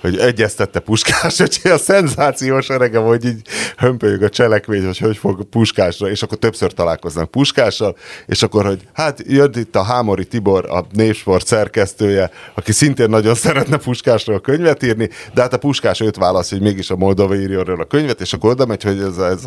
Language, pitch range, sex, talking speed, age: Hungarian, 95-120 Hz, male, 180 wpm, 30-49